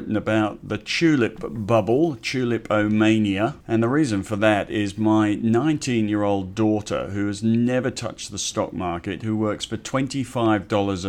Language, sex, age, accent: English, male, 50-69, British